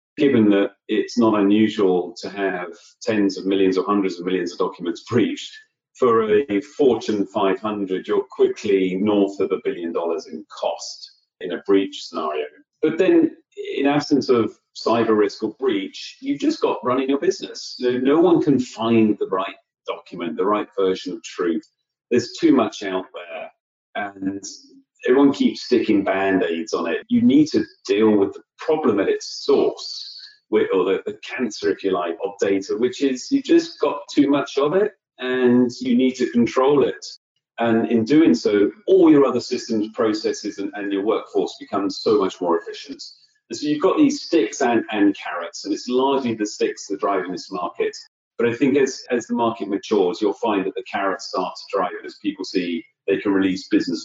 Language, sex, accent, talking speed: English, male, British, 185 wpm